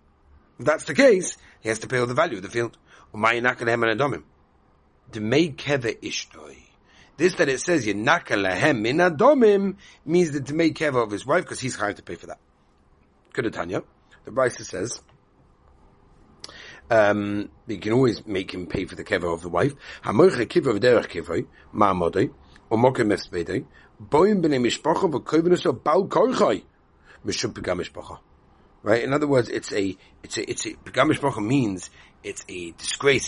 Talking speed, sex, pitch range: 165 wpm, male, 90-145 Hz